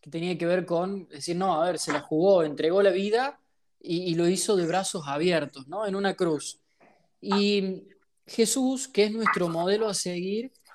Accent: Argentinian